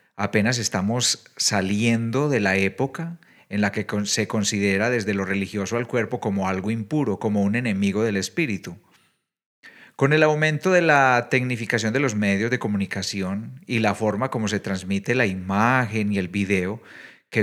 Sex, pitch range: male, 100-125 Hz